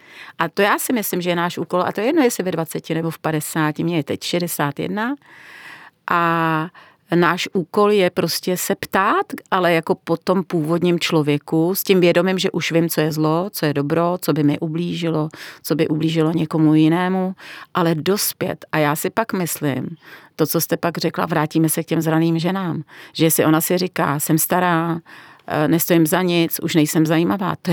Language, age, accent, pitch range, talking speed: Czech, 40-59, native, 155-180 Hz, 190 wpm